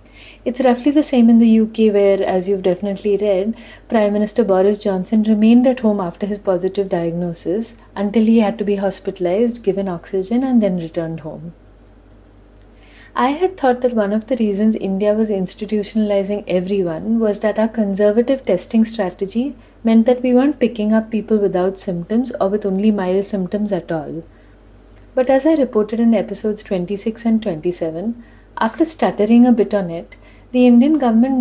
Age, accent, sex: 30-49, Indian, female